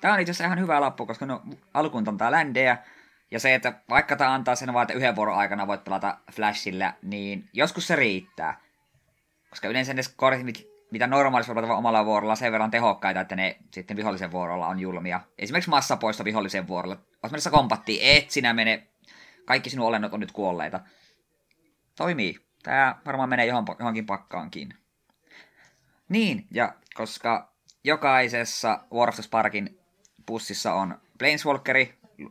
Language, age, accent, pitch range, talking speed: Finnish, 20-39, native, 105-135 Hz, 155 wpm